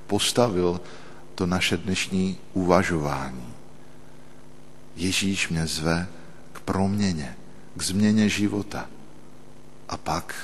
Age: 50-69